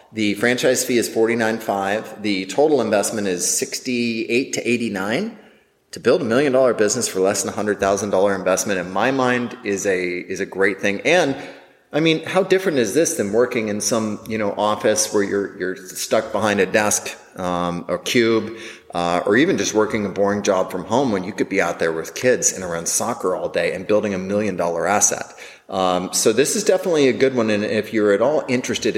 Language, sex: English, male